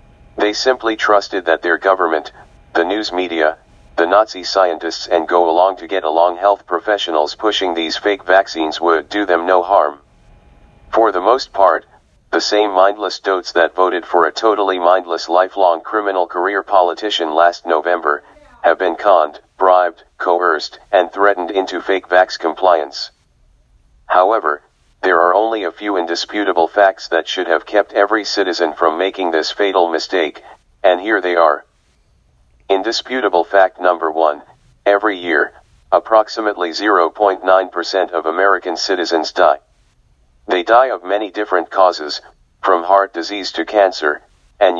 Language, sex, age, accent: English, male, 40-59, American